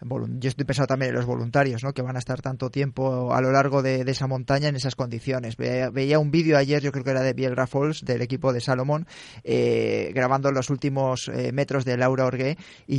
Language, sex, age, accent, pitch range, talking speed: Spanish, male, 20-39, Spanish, 130-150 Hz, 230 wpm